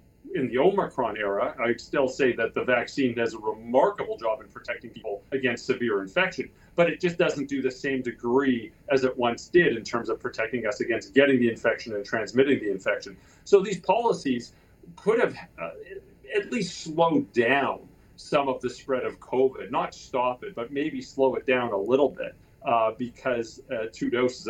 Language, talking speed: English, 190 wpm